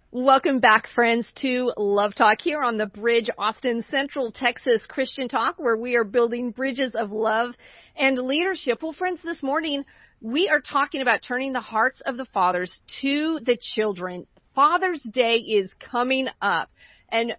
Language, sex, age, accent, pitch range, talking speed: English, female, 40-59, American, 210-250 Hz, 160 wpm